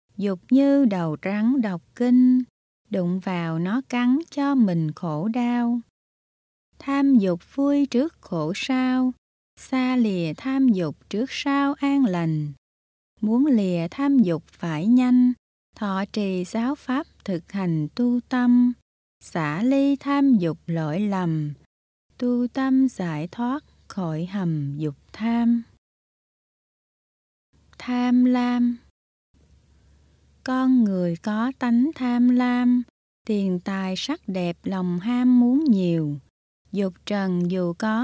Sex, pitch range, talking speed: female, 170-250 Hz, 120 wpm